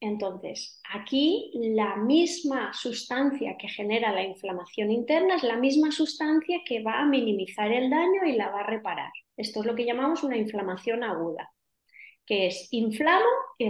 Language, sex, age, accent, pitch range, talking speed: Spanish, female, 30-49, Spanish, 210-290 Hz, 160 wpm